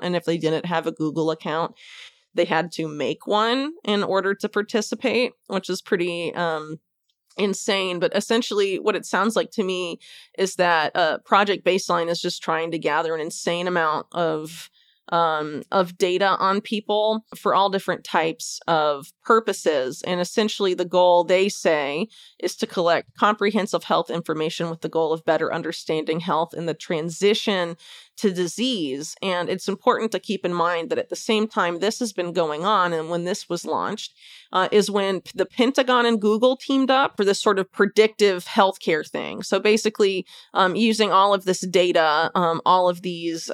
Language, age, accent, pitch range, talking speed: English, 30-49, American, 165-205 Hz, 180 wpm